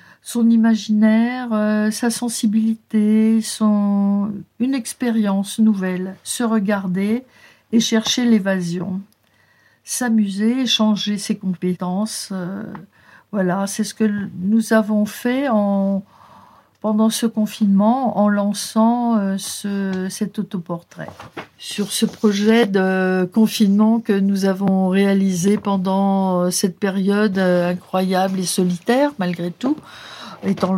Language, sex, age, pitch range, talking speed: French, female, 50-69, 190-220 Hz, 105 wpm